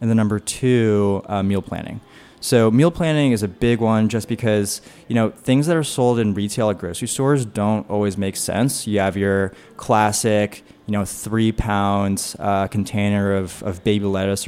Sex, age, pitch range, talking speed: male, 20-39, 95-115 Hz, 185 wpm